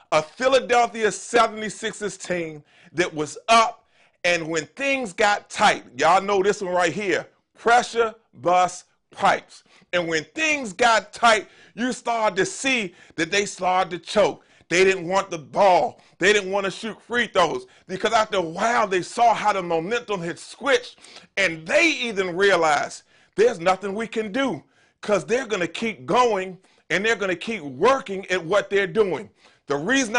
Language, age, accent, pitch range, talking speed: English, 30-49, American, 185-240 Hz, 170 wpm